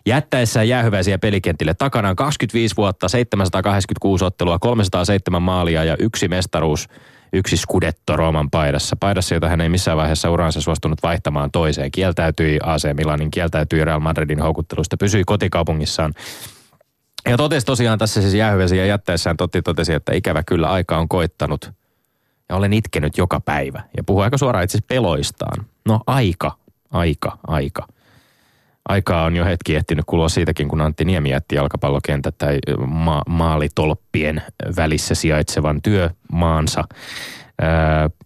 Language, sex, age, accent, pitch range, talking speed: Finnish, male, 20-39, native, 80-105 Hz, 135 wpm